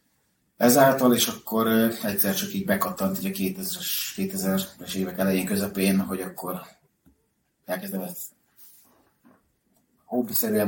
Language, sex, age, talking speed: Hungarian, male, 30-49, 100 wpm